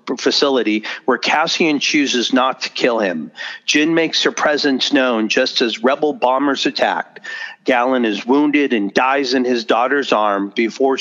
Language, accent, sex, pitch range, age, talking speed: English, American, male, 115-140 Hz, 40-59, 155 wpm